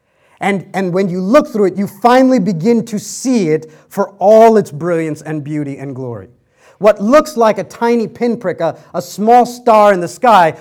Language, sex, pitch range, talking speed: English, male, 165-220 Hz, 190 wpm